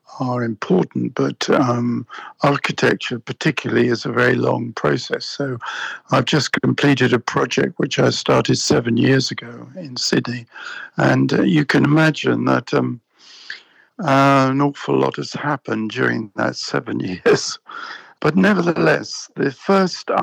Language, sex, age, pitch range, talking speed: English, male, 60-79, 130-185 Hz, 135 wpm